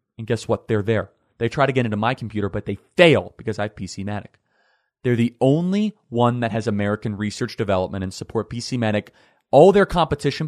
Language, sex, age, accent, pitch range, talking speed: English, male, 30-49, American, 105-130 Hz, 195 wpm